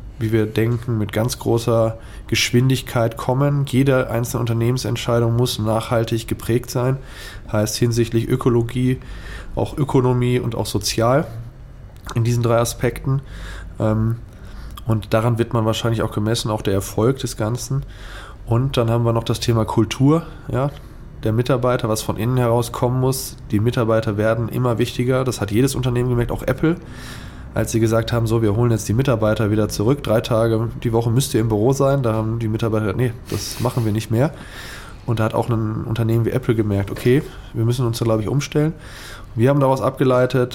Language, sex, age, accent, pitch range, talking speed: German, male, 20-39, German, 110-125 Hz, 175 wpm